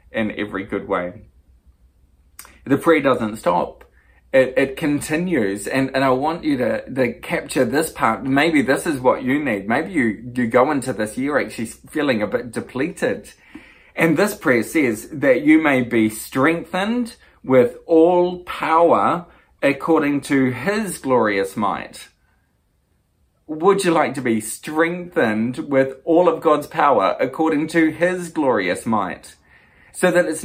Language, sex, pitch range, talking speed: English, male, 115-160 Hz, 150 wpm